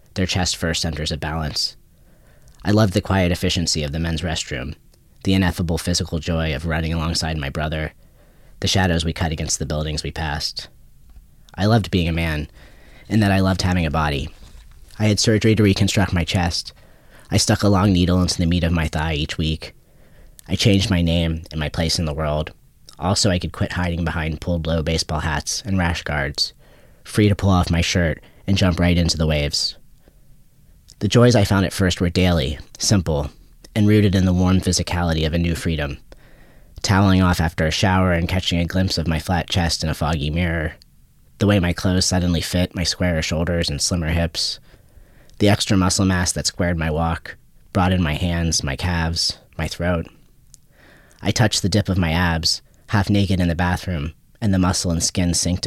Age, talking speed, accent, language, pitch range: 30-49, 195 wpm, American, English, 80-95 Hz